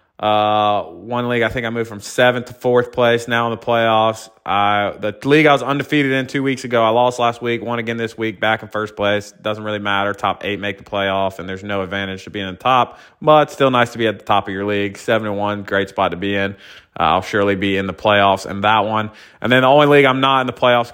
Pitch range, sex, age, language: 100-120 Hz, male, 20-39, English